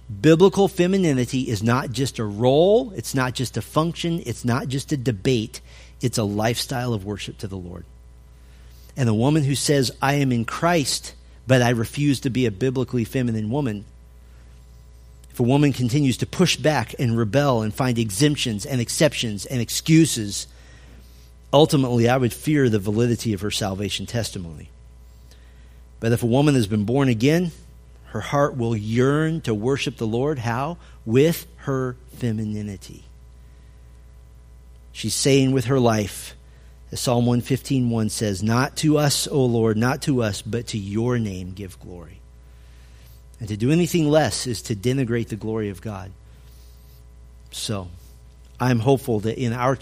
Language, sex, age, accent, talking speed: English, male, 40-59, American, 160 wpm